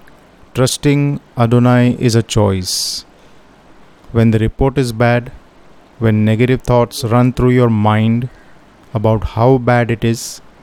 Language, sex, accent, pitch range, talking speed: Hindi, male, native, 110-130 Hz, 125 wpm